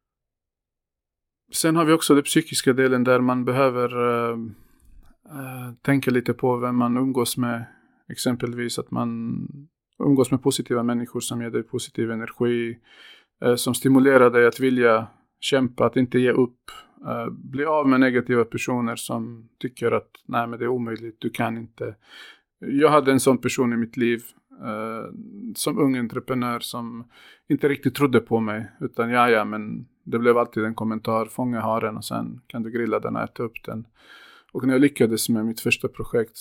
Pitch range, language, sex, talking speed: 115-135 Hz, Swedish, male, 175 wpm